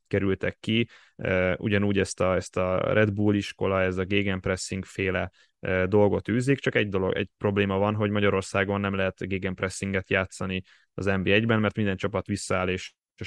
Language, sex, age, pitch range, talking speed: Hungarian, male, 10-29, 95-105 Hz, 170 wpm